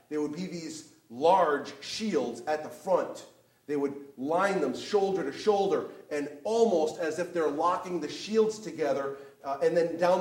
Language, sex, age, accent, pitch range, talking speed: English, male, 30-49, American, 145-195 Hz, 170 wpm